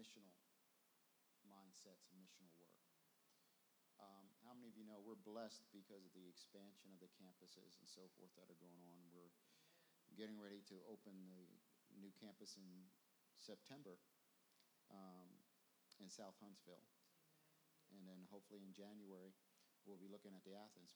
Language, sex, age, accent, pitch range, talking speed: English, male, 50-69, American, 95-110 Hz, 145 wpm